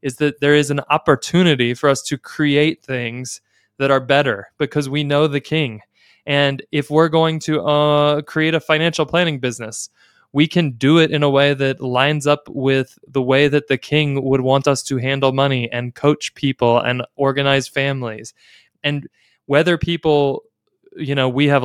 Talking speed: 180 wpm